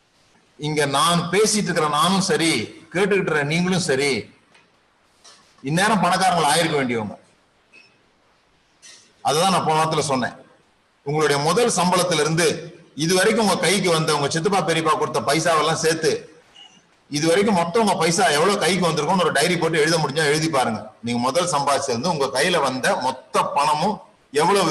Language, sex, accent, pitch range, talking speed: Tamil, male, native, 155-200 Hz, 125 wpm